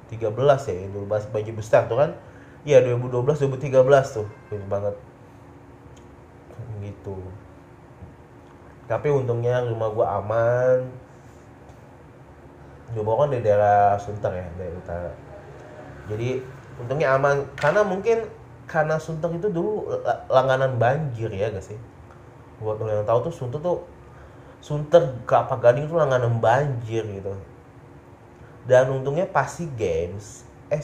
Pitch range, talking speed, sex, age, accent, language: 105-130 Hz, 120 wpm, male, 20-39, native, Indonesian